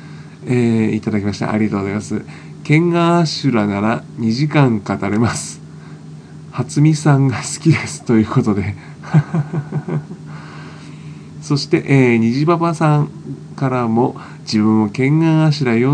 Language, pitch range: Japanese, 110-145 Hz